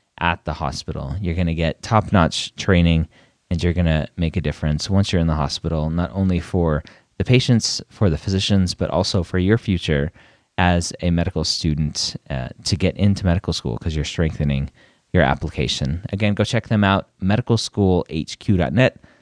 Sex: male